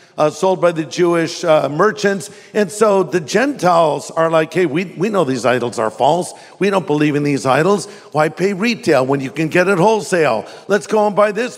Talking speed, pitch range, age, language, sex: 210 wpm, 170-210 Hz, 50-69, English, male